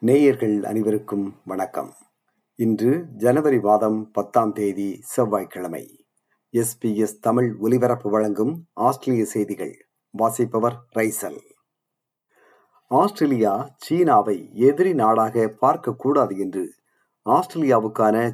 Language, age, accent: Tamil, 50-69, native